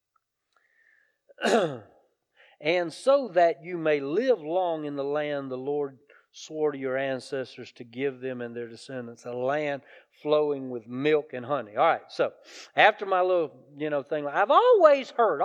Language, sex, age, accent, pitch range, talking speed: English, male, 40-59, American, 175-255 Hz, 160 wpm